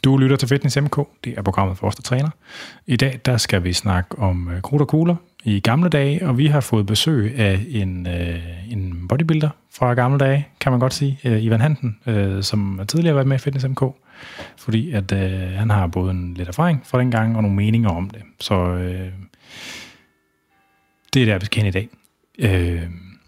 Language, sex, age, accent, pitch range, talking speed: Danish, male, 30-49, native, 95-130 Hz, 210 wpm